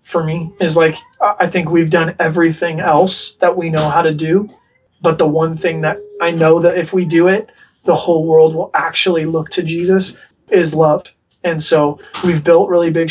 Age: 20-39